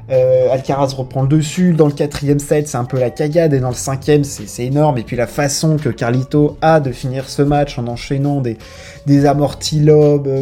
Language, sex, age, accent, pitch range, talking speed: French, male, 20-39, French, 120-155 Hz, 215 wpm